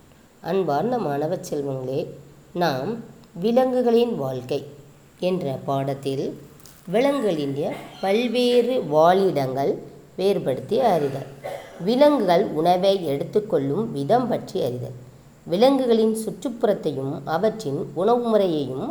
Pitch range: 140-220 Hz